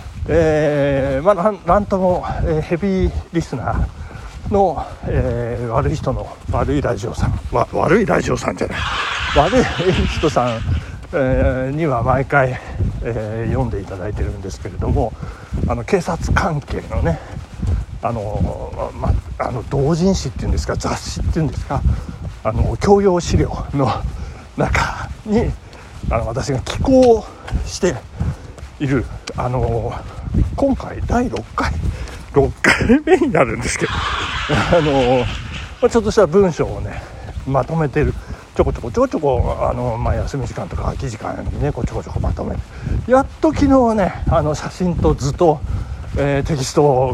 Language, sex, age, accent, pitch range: Japanese, male, 60-79, native, 95-150 Hz